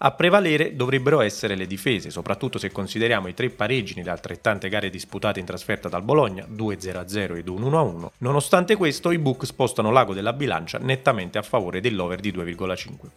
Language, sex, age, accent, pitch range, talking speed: Italian, male, 30-49, native, 95-135 Hz, 170 wpm